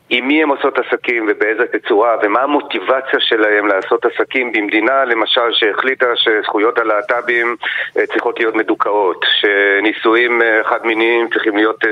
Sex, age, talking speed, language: male, 40-59, 120 wpm, Hebrew